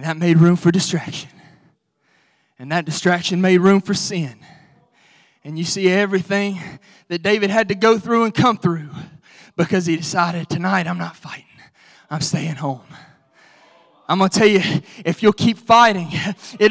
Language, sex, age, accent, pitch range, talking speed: English, male, 20-39, American, 175-260 Hz, 165 wpm